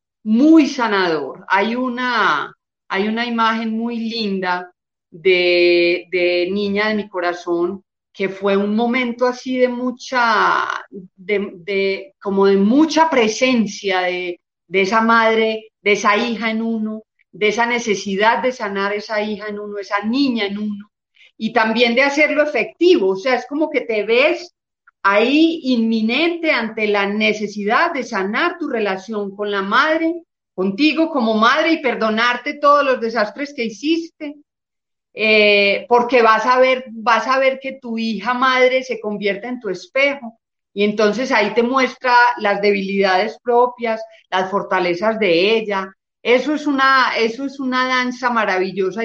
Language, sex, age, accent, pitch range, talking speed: Spanish, female, 40-59, Colombian, 200-255 Hz, 145 wpm